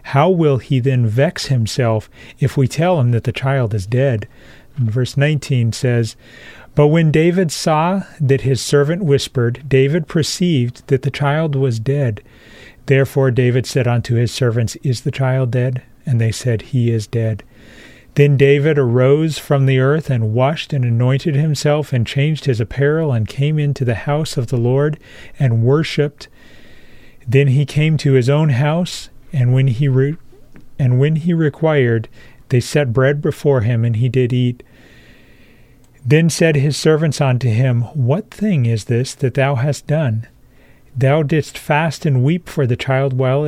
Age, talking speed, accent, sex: 40-59, 170 wpm, American, male